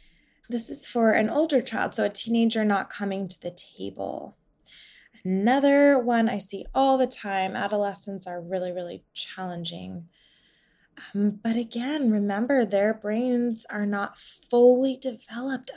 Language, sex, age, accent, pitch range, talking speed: English, female, 20-39, American, 195-245 Hz, 135 wpm